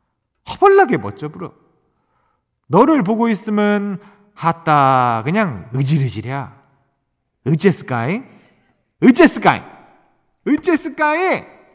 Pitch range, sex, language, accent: 125-200 Hz, male, Korean, native